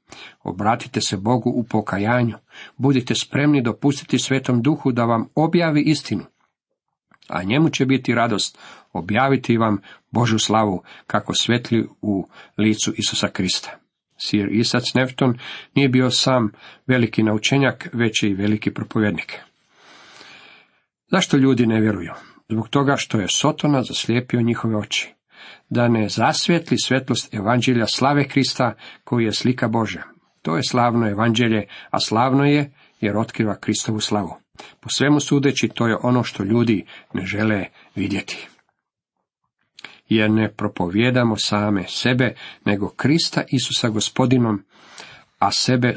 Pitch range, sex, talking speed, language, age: 105-130 Hz, male, 125 wpm, Croatian, 50-69